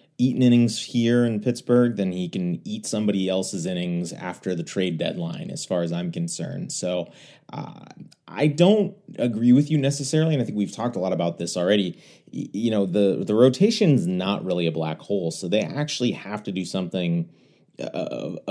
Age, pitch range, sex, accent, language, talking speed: 30-49, 90-140 Hz, male, American, English, 185 wpm